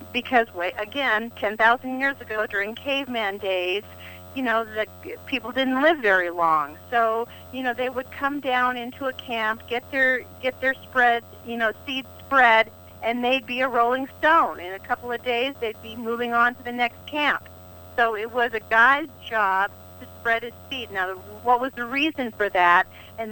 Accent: American